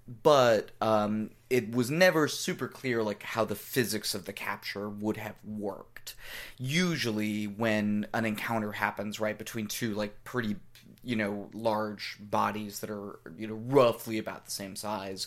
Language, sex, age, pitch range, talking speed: English, male, 30-49, 105-120 Hz, 155 wpm